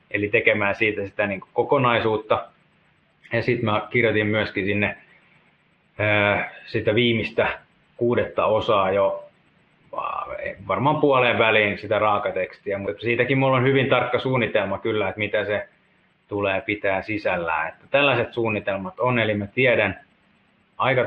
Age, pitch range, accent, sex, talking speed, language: 30-49, 105-120 Hz, native, male, 125 wpm, Finnish